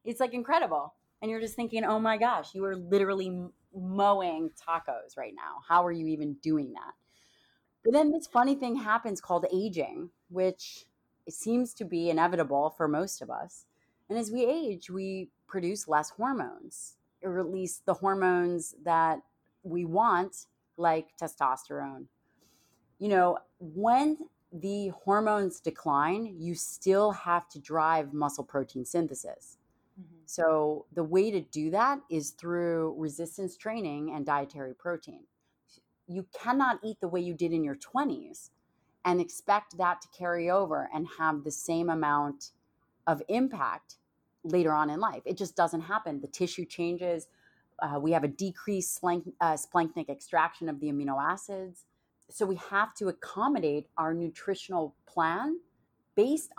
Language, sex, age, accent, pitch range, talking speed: English, female, 30-49, American, 160-200 Hz, 150 wpm